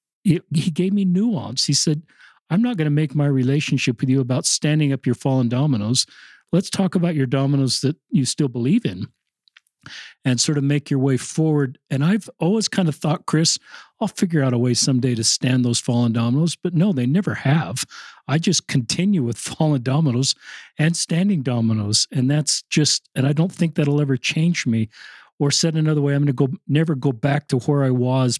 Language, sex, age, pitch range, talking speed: English, male, 50-69, 130-160 Hz, 205 wpm